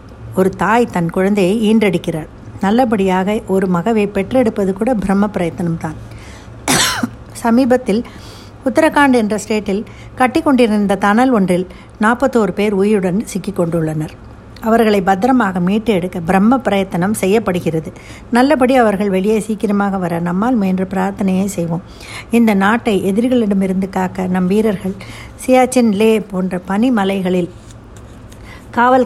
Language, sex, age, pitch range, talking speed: Tamil, female, 60-79, 185-230 Hz, 100 wpm